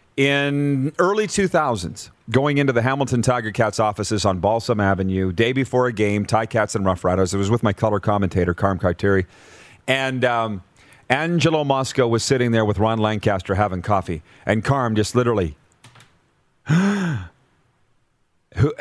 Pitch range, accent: 105-135 Hz, American